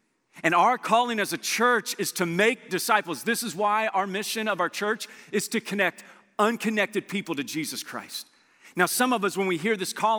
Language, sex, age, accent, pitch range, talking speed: English, male, 40-59, American, 195-245 Hz, 205 wpm